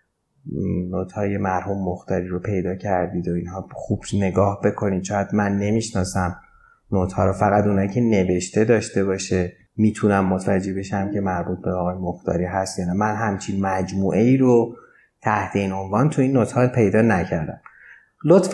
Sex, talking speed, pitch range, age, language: male, 160 wpm, 95-115 Hz, 30-49, Persian